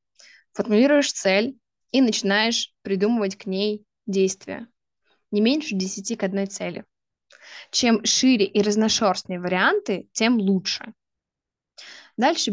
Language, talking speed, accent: Russian, 105 wpm, native